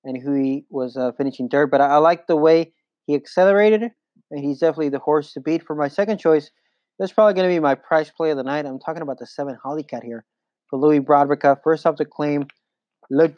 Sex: male